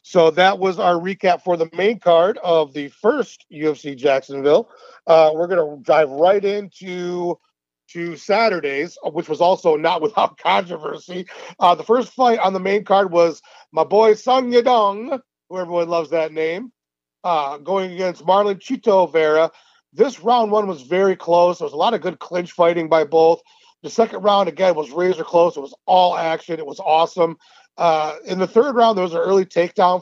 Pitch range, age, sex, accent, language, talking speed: 160-195 Hz, 40-59, male, American, English, 185 wpm